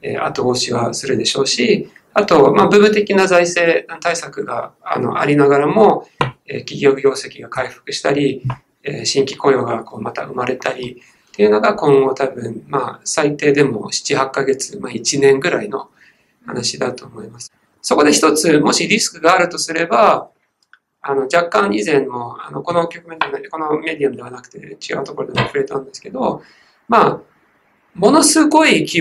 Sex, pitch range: male, 135-200 Hz